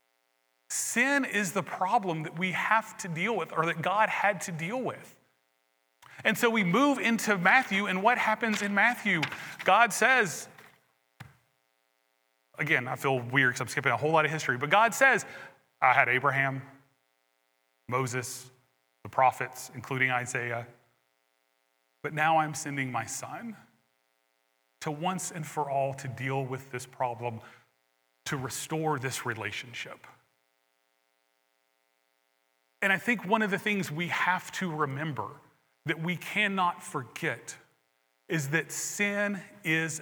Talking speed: 140 wpm